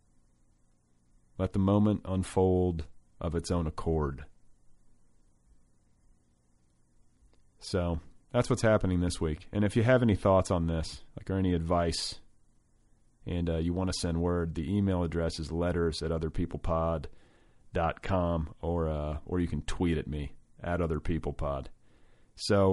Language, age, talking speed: English, 30-49, 130 wpm